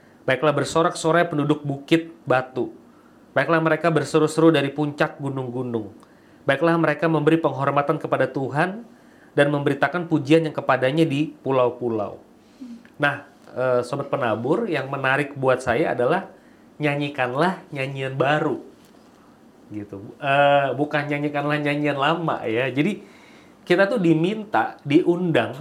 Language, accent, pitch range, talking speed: Indonesian, native, 140-175 Hz, 110 wpm